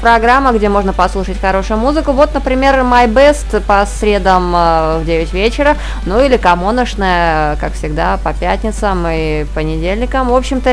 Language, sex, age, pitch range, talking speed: Russian, female, 20-39, 175-250 Hz, 145 wpm